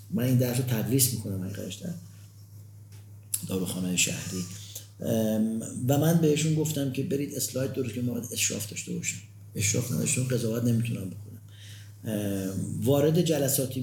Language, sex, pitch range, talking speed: Persian, male, 105-140 Hz, 135 wpm